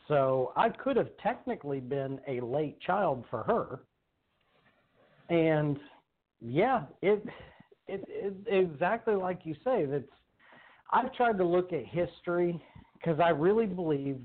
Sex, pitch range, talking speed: male, 140-180 Hz, 135 wpm